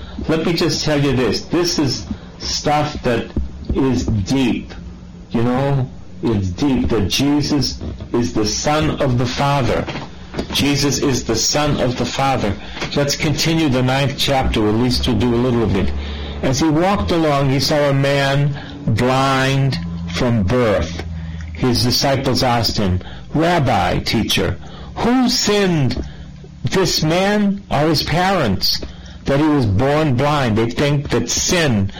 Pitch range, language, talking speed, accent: 105-145 Hz, English, 145 wpm, American